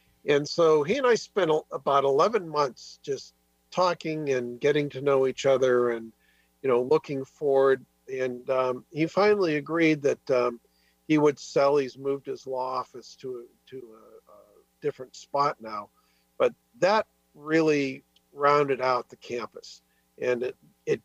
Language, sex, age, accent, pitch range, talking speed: English, male, 50-69, American, 120-150 Hz, 155 wpm